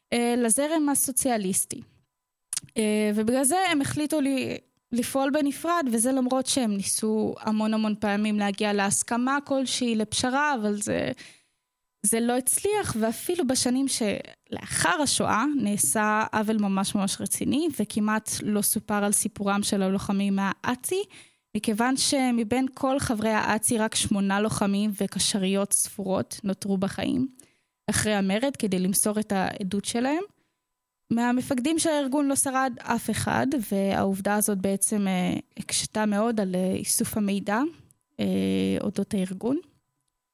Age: 10-29